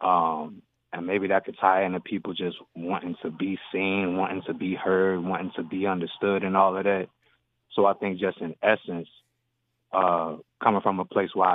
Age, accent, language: 20-39, American, English